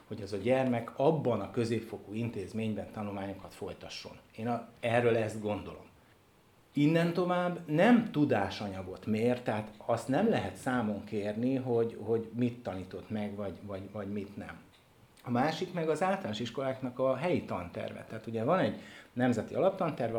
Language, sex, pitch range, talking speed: Hungarian, male, 100-130 Hz, 145 wpm